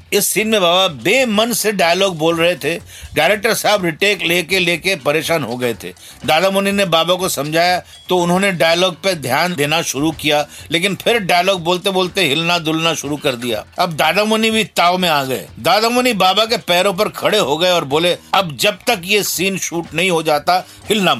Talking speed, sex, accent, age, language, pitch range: 195 wpm, male, native, 50-69, Hindi, 160-205 Hz